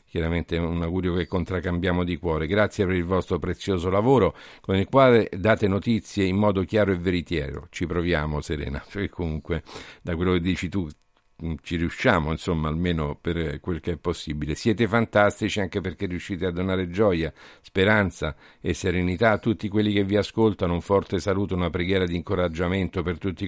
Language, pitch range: Italian, 85-100 Hz